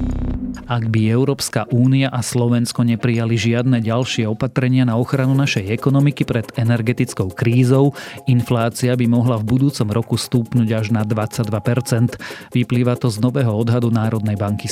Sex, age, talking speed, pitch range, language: male, 30-49, 140 wpm, 115-130 Hz, Slovak